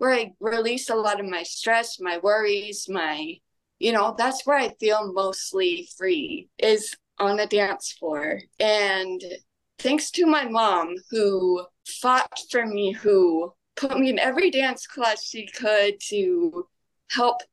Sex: female